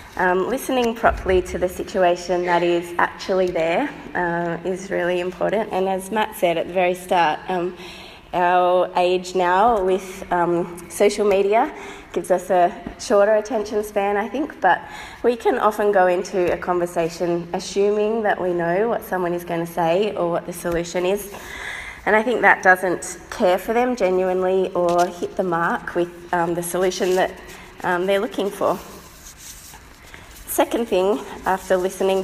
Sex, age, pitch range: female, 20-39, 175-205 Hz